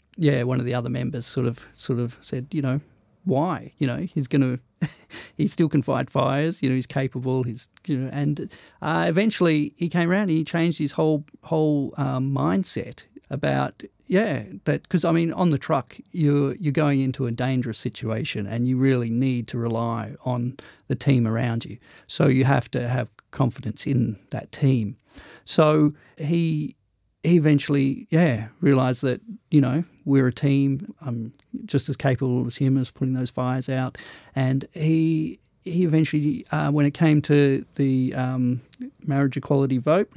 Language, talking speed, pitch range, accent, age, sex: English, 175 wpm, 125-150 Hz, Australian, 40-59, male